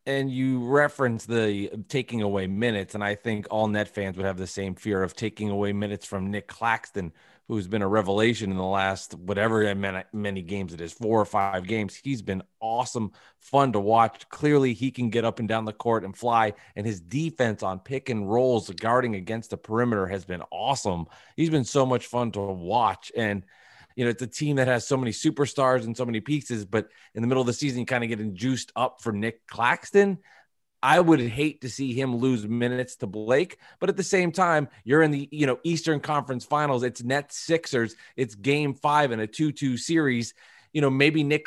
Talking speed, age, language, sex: 215 wpm, 30-49, English, male